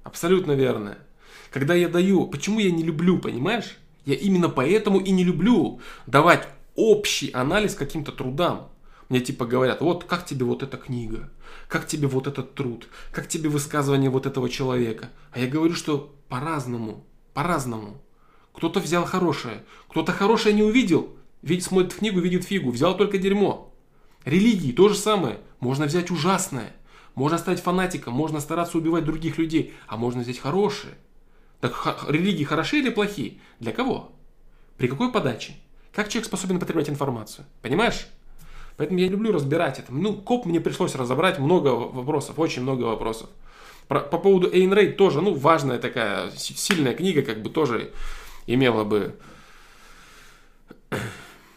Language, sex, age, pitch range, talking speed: Russian, male, 20-39, 130-185 Hz, 150 wpm